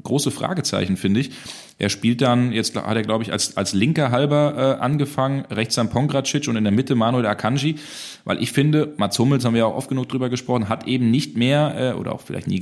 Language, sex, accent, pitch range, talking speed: German, male, German, 100-125 Hz, 235 wpm